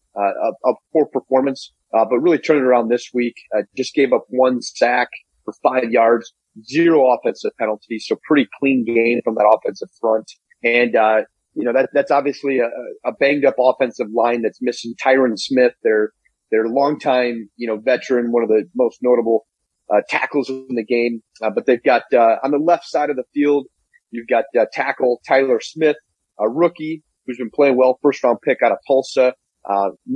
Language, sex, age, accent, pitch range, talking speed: English, male, 30-49, American, 115-140 Hz, 195 wpm